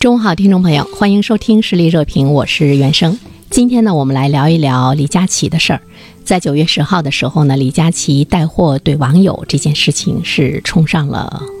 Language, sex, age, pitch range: Chinese, female, 50-69, 145-190 Hz